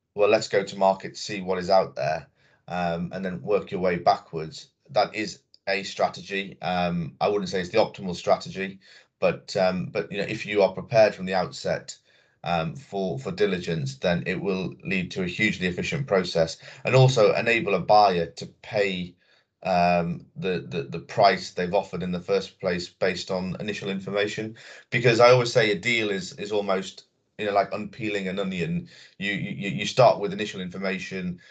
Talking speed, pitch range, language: 185 wpm, 90-110 Hz, English